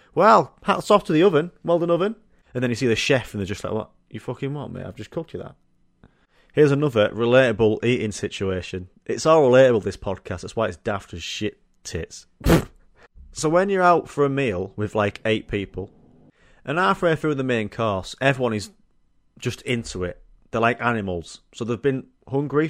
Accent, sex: British, male